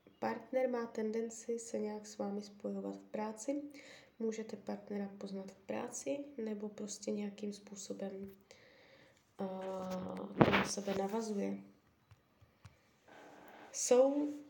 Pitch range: 205-235 Hz